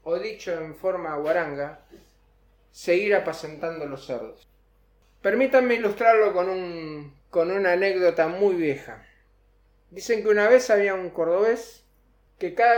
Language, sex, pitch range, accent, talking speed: Spanish, male, 165-255 Hz, Argentinian, 125 wpm